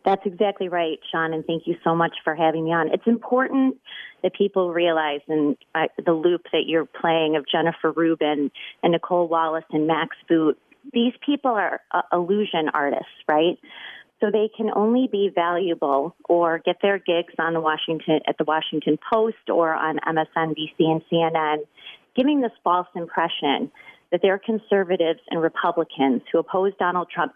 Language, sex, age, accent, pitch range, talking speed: English, female, 30-49, American, 165-200 Hz, 170 wpm